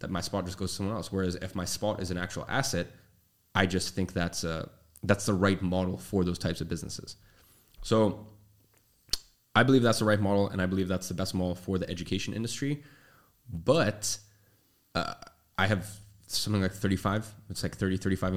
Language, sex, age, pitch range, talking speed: English, male, 20-39, 90-100 Hz, 195 wpm